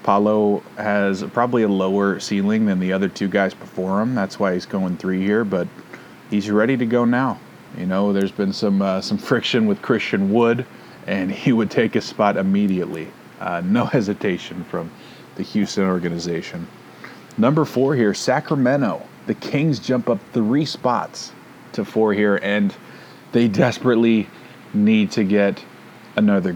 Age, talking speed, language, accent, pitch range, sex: 30-49, 160 wpm, English, American, 95-120 Hz, male